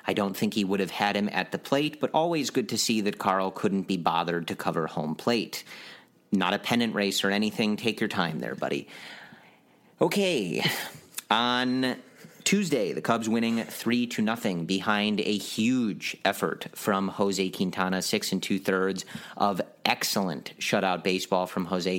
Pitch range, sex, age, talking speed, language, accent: 95-110 Hz, male, 30-49, 165 wpm, English, American